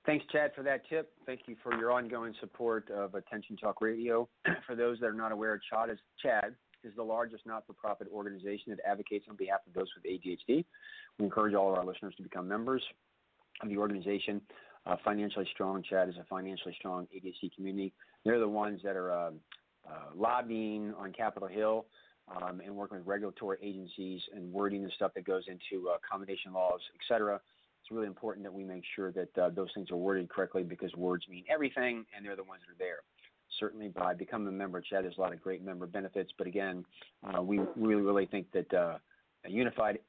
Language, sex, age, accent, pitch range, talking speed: English, male, 40-59, American, 95-110 Hz, 205 wpm